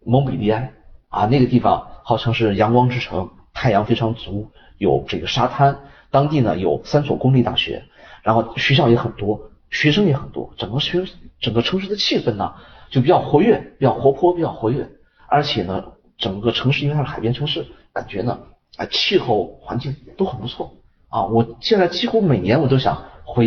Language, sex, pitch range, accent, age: Chinese, male, 110-150 Hz, native, 30-49